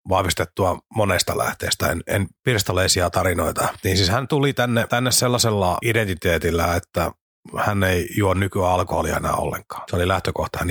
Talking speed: 150 wpm